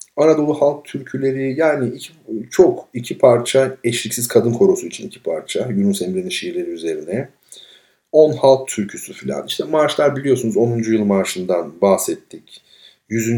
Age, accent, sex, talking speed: 50-69, native, male, 135 wpm